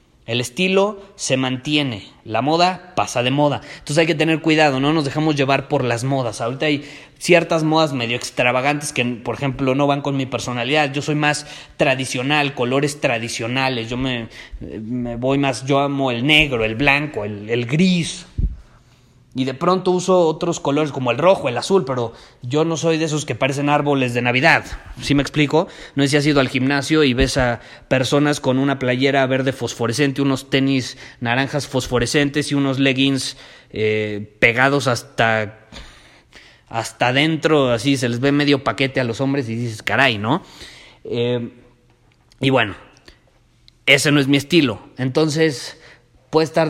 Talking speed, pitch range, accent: 170 wpm, 120-150 Hz, Mexican